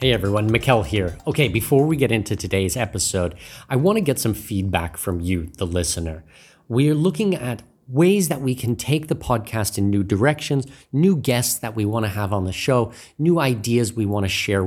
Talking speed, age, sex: 205 wpm, 30-49, male